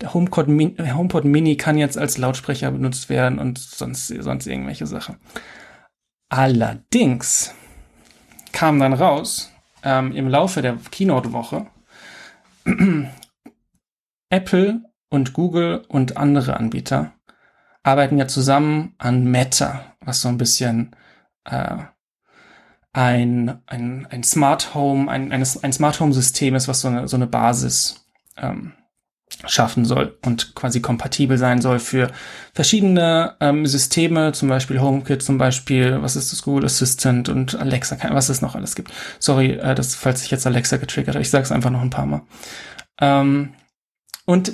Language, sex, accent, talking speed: German, male, German, 140 wpm